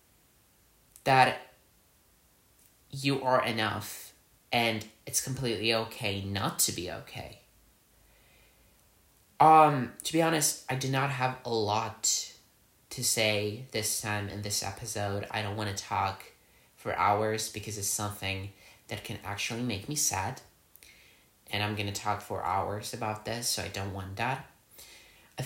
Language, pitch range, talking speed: English, 100-130 Hz, 140 wpm